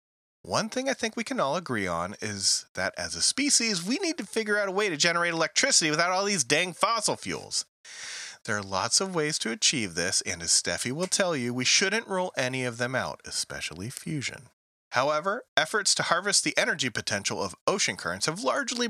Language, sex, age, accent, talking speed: English, male, 30-49, American, 205 wpm